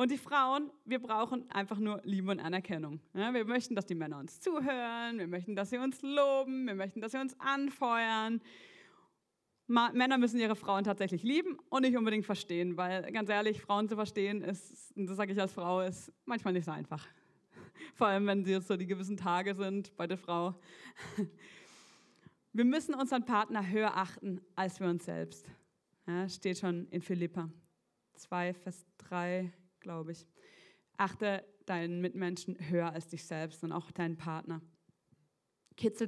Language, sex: German, female